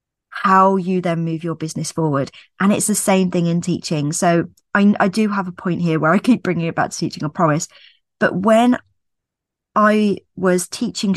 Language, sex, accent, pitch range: English, female, British, 160-200 Hz